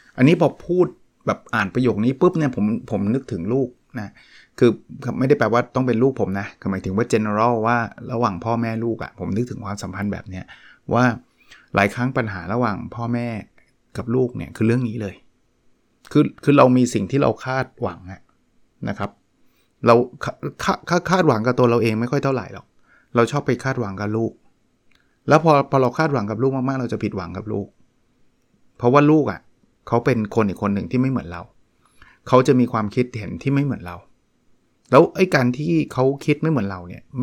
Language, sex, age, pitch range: Thai, male, 20-39, 105-135 Hz